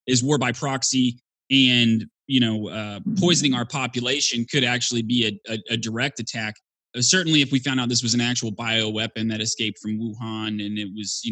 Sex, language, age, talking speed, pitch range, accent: male, English, 20-39, 200 wpm, 110-135 Hz, American